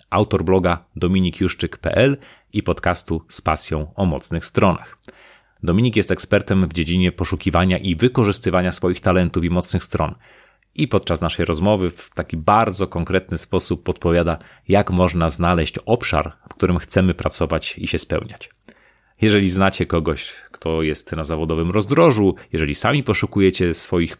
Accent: native